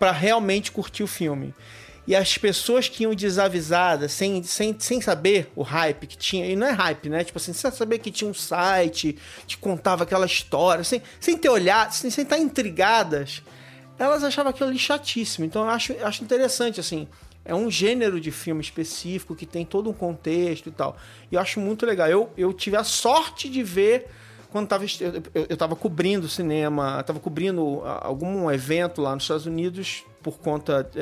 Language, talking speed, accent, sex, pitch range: English, 190 wpm, Brazilian, male, 170-235 Hz